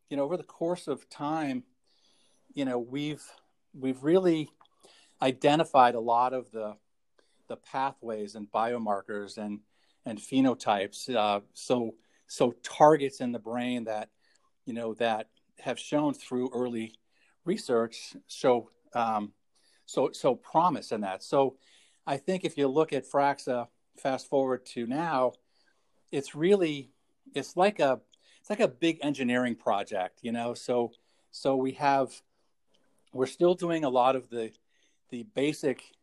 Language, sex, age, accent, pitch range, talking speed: English, male, 50-69, American, 115-150 Hz, 140 wpm